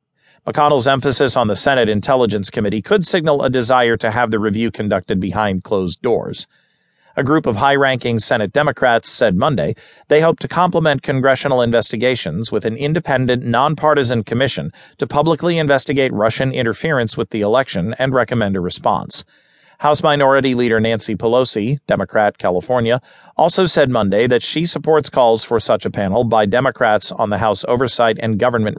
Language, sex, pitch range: English, male, 115-150 Hz